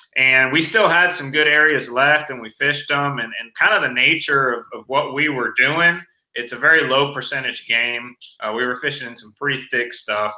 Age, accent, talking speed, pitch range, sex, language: 30-49, American, 225 wpm, 120-150 Hz, male, English